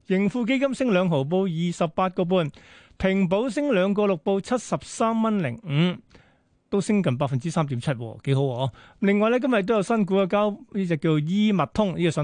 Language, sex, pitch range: Chinese, male, 155-195 Hz